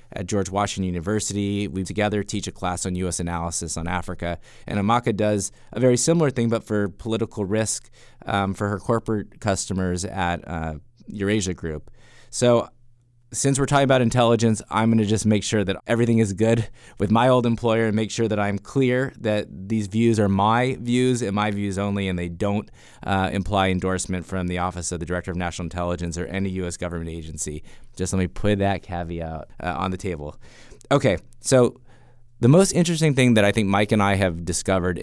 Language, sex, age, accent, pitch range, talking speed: English, male, 20-39, American, 90-115 Hz, 195 wpm